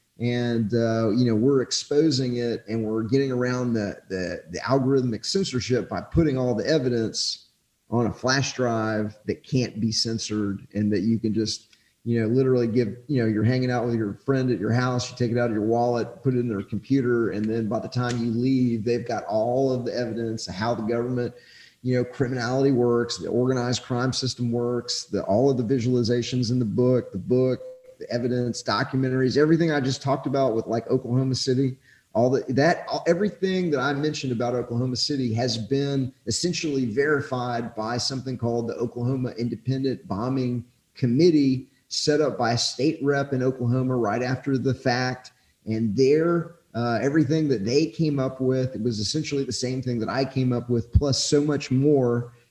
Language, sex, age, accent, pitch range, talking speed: English, male, 30-49, American, 115-135 Hz, 190 wpm